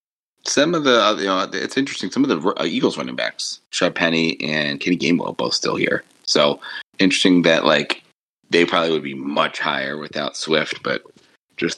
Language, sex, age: English, male, 30-49